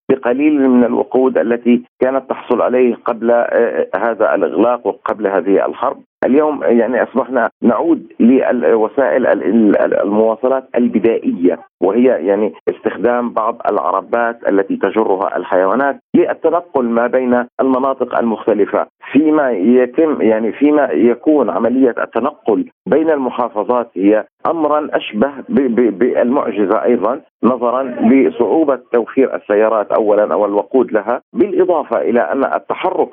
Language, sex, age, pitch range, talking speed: Arabic, male, 50-69, 115-145 Hz, 105 wpm